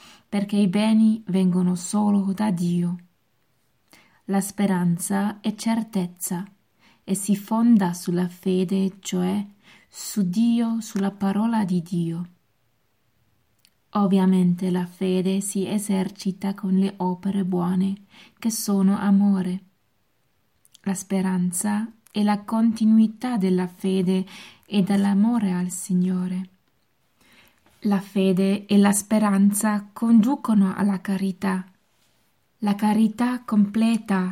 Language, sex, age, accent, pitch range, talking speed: Italian, female, 20-39, native, 185-210 Hz, 100 wpm